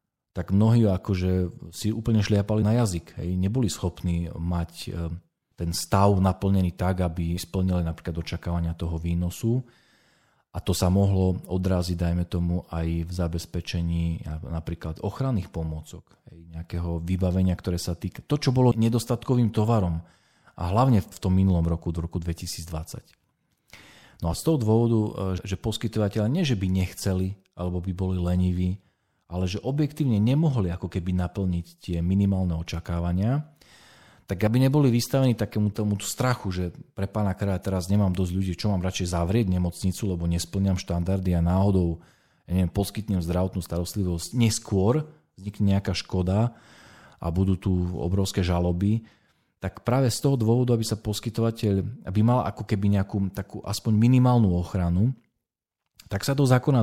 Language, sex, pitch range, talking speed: Slovak, male, 90-110 Hz, 145 wpm